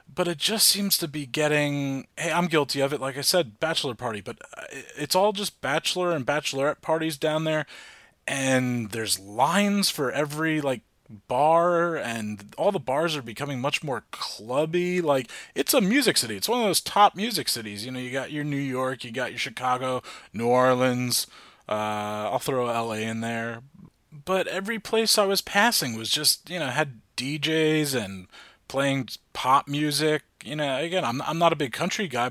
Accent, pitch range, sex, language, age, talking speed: American, 120-175 Hz, male, English, 30-49, 185 wpm